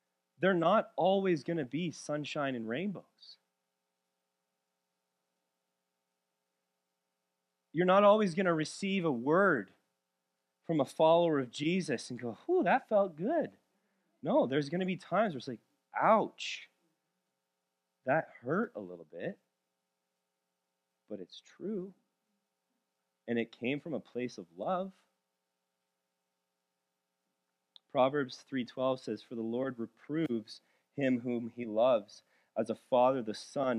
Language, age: English, 30-49